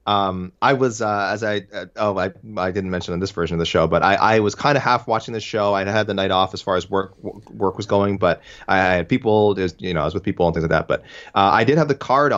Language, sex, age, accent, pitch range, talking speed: English, male, 30-49, American, 90-110 Hz, 310 wpm